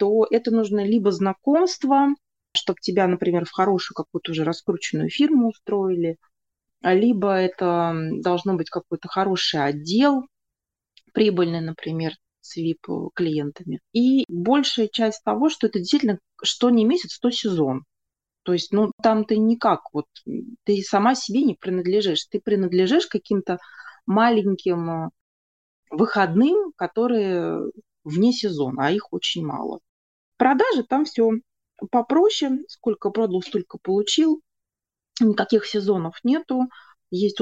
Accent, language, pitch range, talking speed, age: native, Russian, 175-235 Hz, 120 wpm, 30-49